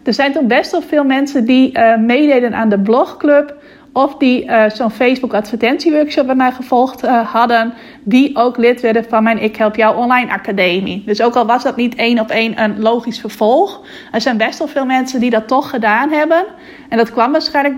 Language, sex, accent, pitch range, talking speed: Dutch, female, Dutch, 220-260 Hz, 215 wpm